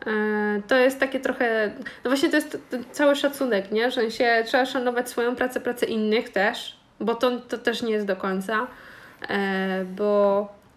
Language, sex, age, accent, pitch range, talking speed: Polish, female, 20-39, native, 205-240 Hz, 150 wpm